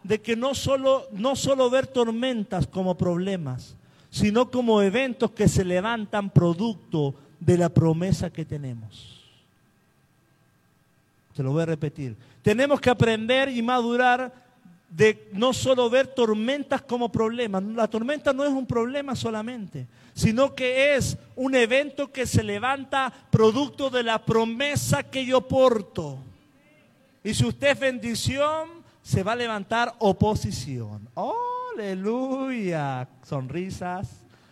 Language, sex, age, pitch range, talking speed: Spanish, male, 50-69, 175-255 Hz, 125 wpm